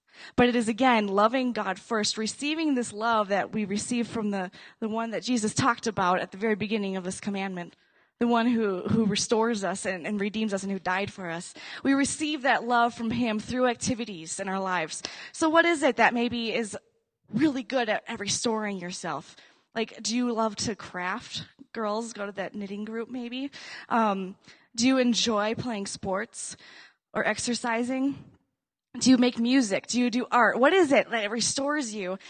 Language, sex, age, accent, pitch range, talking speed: English, female, 20-39, American, 195-245 Hz, 190 wpm